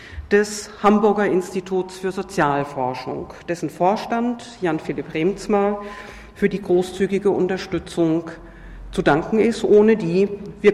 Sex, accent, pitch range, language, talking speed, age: female, German, 170-210 Hz, German, 110 wpm, 50-69